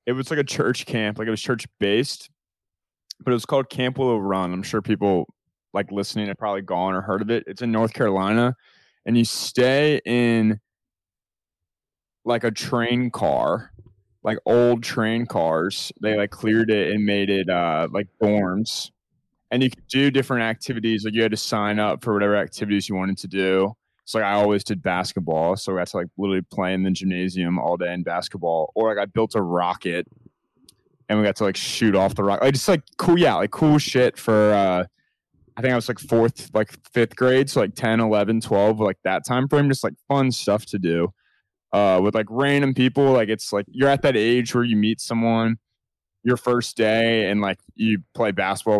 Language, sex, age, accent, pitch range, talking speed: English, male, 20-39, American, 100-120 Hz, 205 wpm